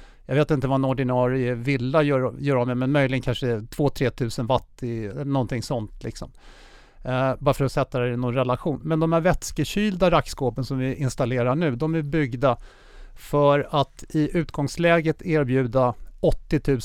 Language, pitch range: Swedish, 130-155 Hz